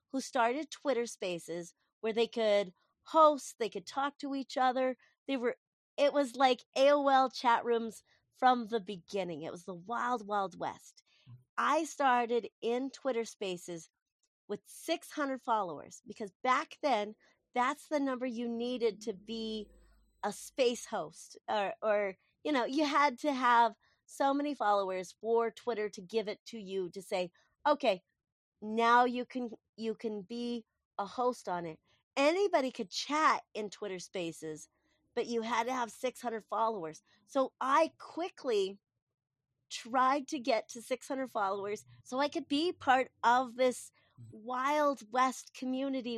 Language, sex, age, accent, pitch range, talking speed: English, female, 40-59, American, 210-270 Hz, 150 wpm